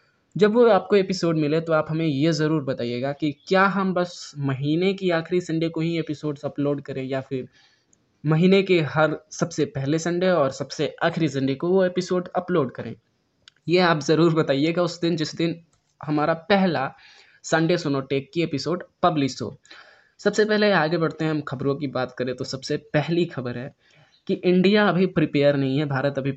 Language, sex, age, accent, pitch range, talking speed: Hindi, male, 20-39, native, 135-180 Hz, 180 wpm